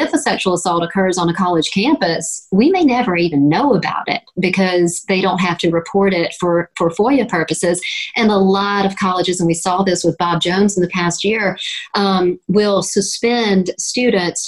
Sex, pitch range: female, 170-200 Hz